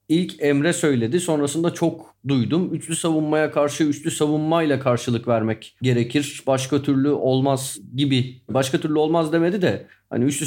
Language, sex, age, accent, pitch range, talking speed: Turkish, male, 40-59, native, 125-160 Hz, 145 wpm